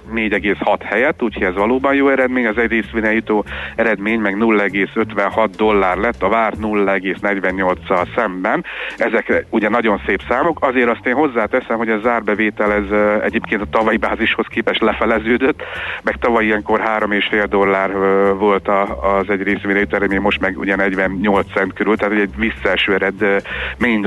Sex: male